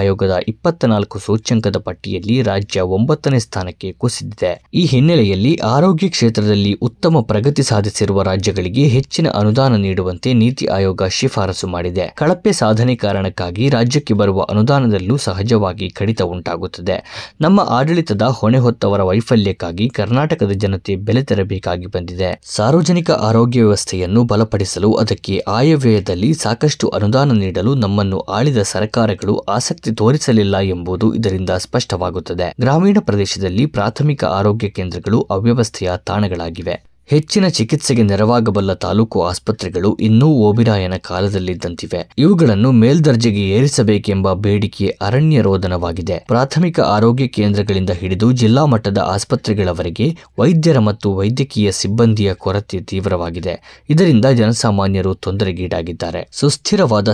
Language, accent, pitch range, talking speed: Kannada, native, 95-125 Hz, 100 wpm